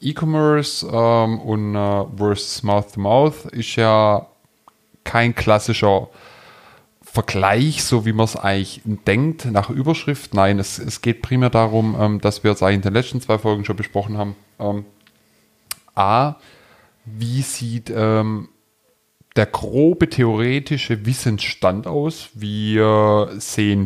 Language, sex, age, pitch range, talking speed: German, male, 20-39, 105-130 Hz, 125 wpm